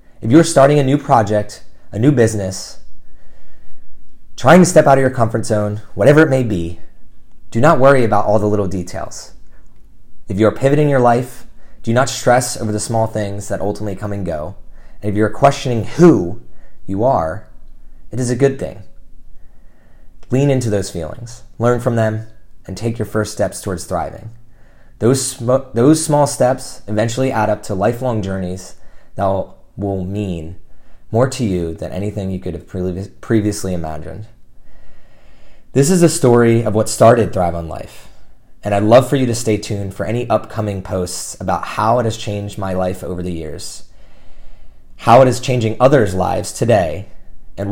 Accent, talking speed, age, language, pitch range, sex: American, 170 wpm, 30-49, English, 95-120 Hz, male